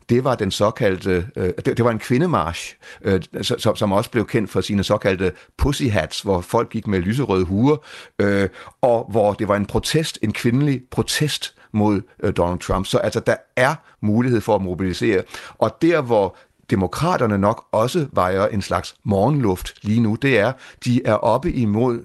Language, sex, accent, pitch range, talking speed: Danish, male, native, 100-125 Hz, 165 wpm